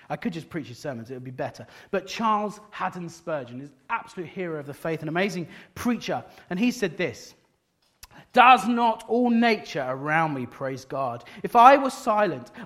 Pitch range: 160-230 Hz